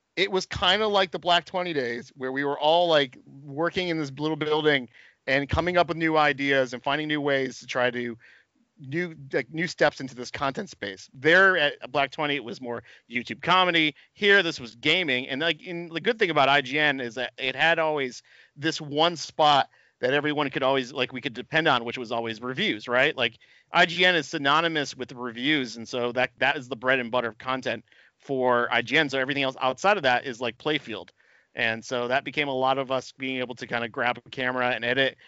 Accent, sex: American, male